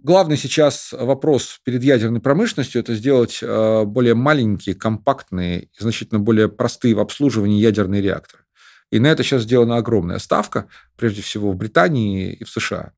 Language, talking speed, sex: Russian, 155 wpm, male